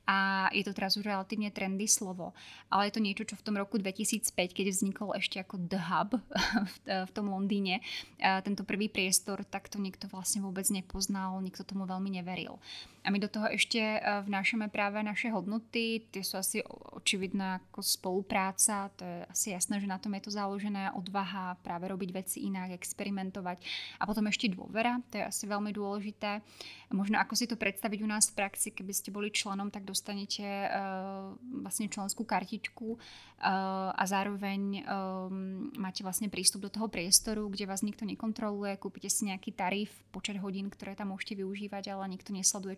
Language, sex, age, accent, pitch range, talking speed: Czech, female, 20-39, native, 190-210 Hz, 170 wpm